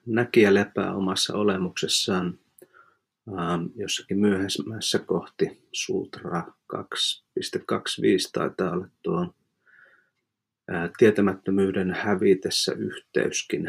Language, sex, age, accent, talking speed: Finnish, male, 30-49, native, 65 wpm